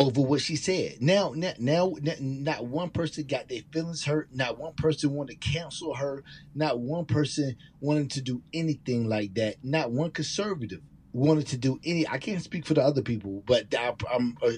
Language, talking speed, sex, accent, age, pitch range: English, 195 wpm, male, American, 30-49, 125-155 Hz